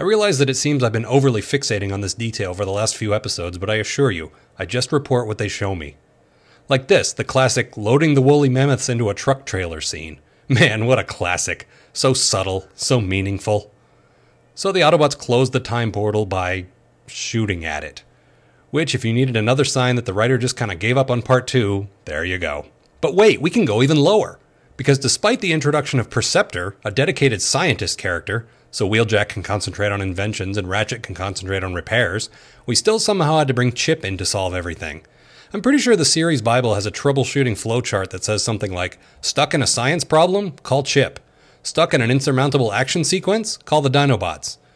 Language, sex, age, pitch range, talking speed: English, male, 30-49, 100-135 Hz, 200 wpm